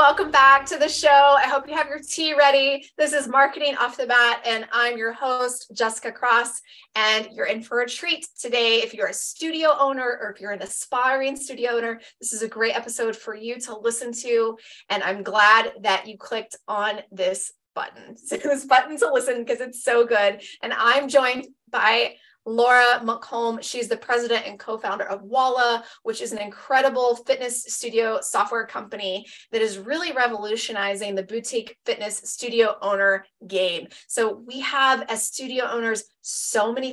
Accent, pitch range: American, 210-270 Hz